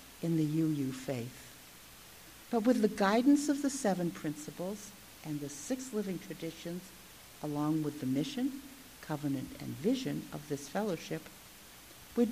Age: 60-79